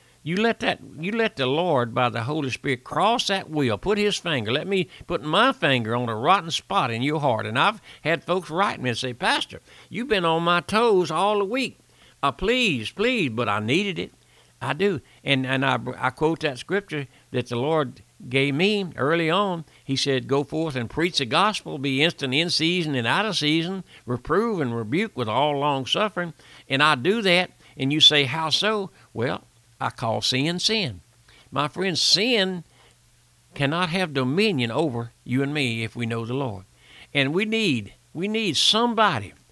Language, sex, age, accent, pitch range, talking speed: English, male, 60-79, American, 125-185 Hz, 195 wpm